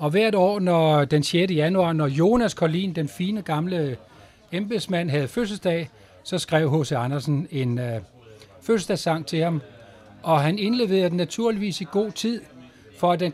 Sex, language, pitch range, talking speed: male, Danish, 140-185 Hz, 160 wpm